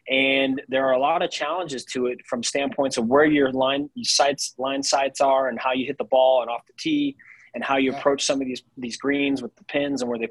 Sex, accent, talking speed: male, American, 250 wpm